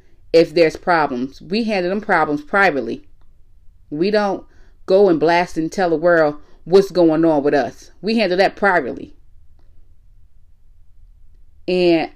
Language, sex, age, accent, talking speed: English, female, 30-49, American, 135 wpm